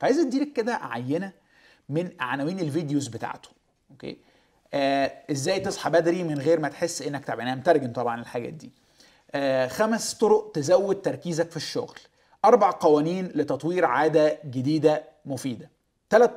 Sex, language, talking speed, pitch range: male, Arabic, 135 wpm, 140-175 Hz